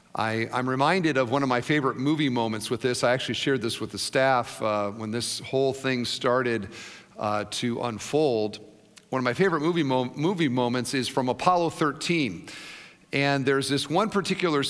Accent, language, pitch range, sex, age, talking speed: American, English, 125-160 Hz, male, 50-69, 185 wpm